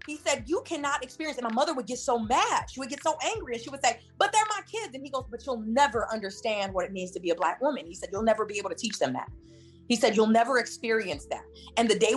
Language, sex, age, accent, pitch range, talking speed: English, female, 20-39, American, 185-270 Hz, 290 wpm